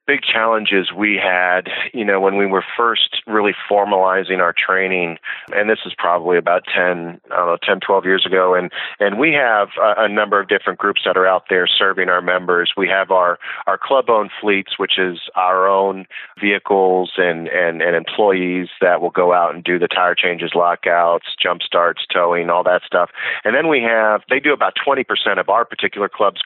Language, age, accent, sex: English, 40-59, American, male